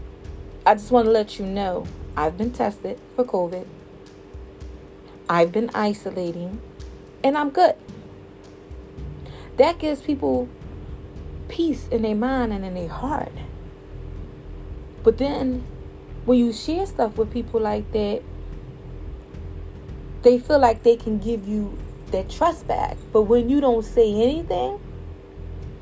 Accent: American